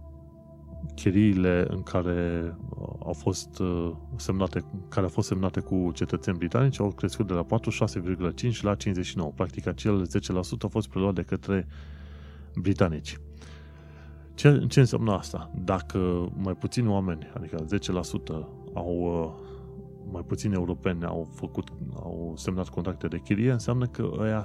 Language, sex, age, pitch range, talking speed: Romanian, male, 30-49, 75-100 Hz, 130 wpm